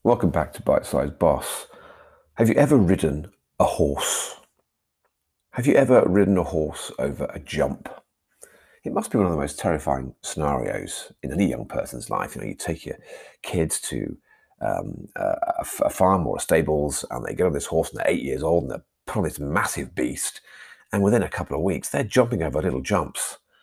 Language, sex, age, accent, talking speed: English, male, 40-59, British, 195 wpm